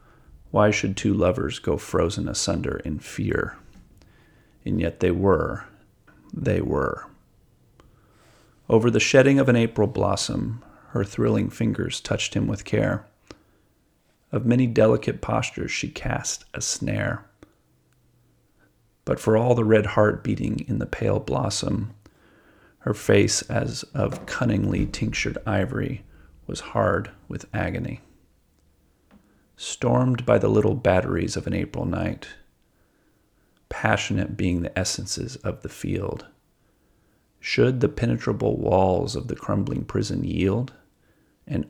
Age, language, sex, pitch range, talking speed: 40-59, English, male, 95-120 Hz, 120 wpm